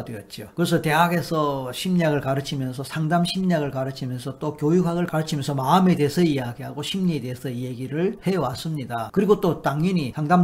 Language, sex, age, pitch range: Korean, male, 40-59, 135-185 Hz